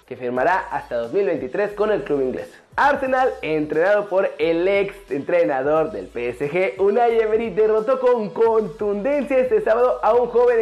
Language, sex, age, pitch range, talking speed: Spanish, male, 20-39, 185-270 Hz, 145 wpm